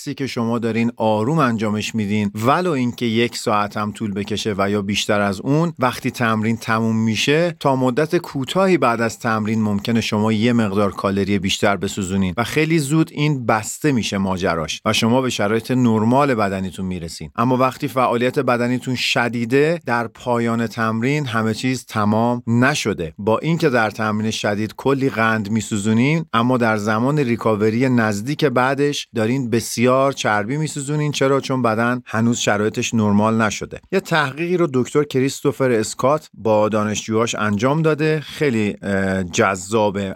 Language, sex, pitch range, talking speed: Persian, male, 110-140 Hz, 145 wpm